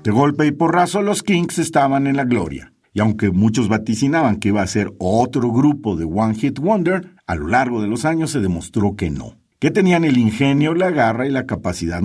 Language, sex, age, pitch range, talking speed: Spanish, male, 50-69, 95-140 Hz, 215 wpm